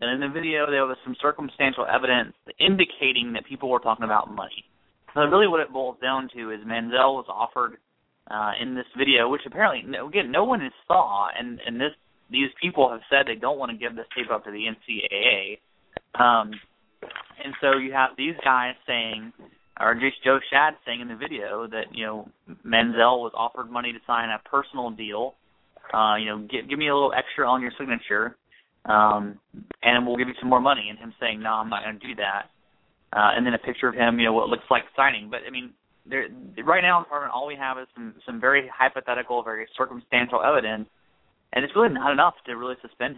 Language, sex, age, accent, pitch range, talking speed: English, male, 30-49, American, 115-135 Hz, 215 wpm